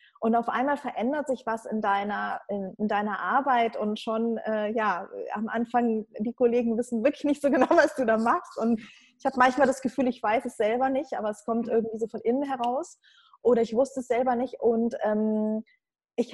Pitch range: 220-255 Hz